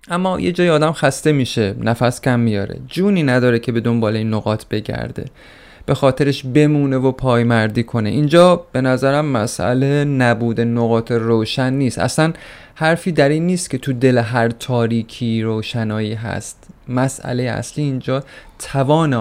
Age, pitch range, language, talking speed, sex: 30-49, 110-135 Hz, Persian, 145 wpm, male